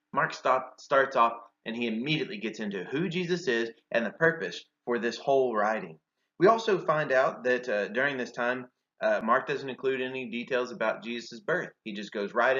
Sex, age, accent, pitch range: male, 30-49, American, 115-150 Hz